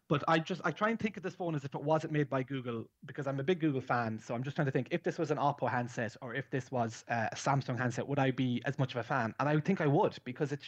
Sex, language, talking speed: male, English, 320 wpm